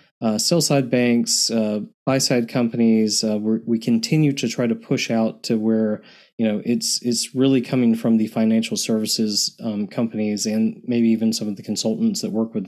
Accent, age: American, 20-39